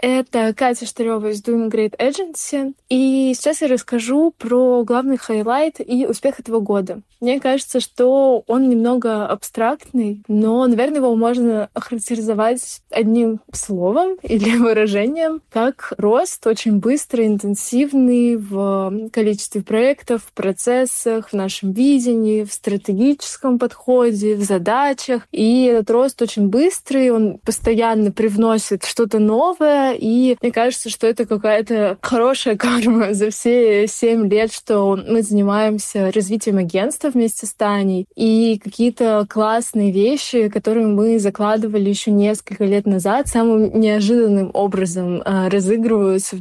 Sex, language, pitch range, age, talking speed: female, Russian, 210-245 Hz, 20-39, 125 wpm